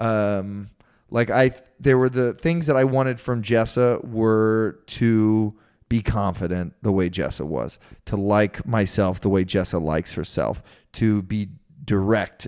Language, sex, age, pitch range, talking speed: English, male, 30-49, 100-135 Hz, 150 wpm